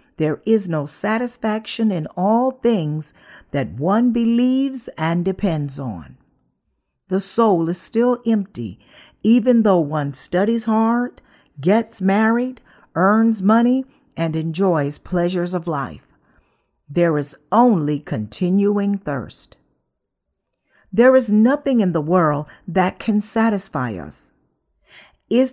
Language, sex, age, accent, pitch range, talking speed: English, female, 50-69, American, 165-235 Hz, 115 wpm